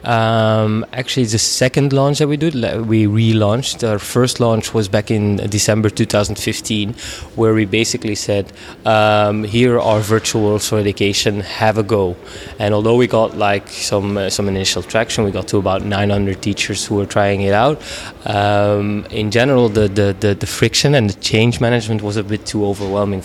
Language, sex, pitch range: English, male, 100-115 Hz